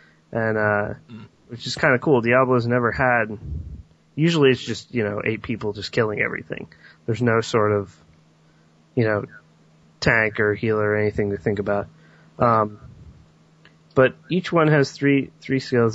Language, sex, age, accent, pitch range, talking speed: English, male, 20-39, American, 105-130 Hz, 160 wpm